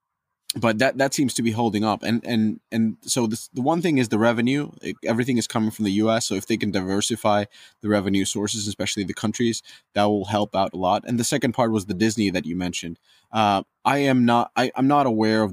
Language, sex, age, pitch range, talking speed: English, male, 20-39, 95-115 Hz, 235 wpm